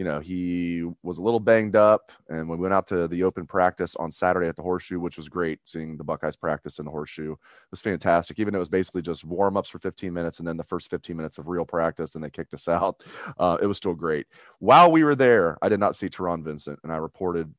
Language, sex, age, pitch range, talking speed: English, male, 30-49, 85-105 Hz, 260 wpm